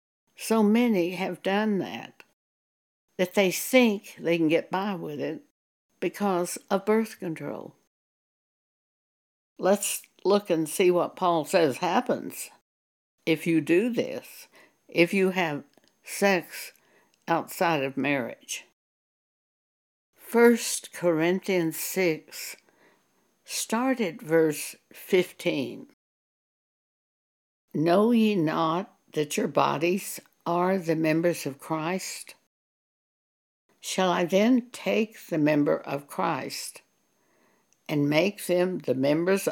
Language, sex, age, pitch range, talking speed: English, female, 60-79, 155-210 Hz, 105 wpm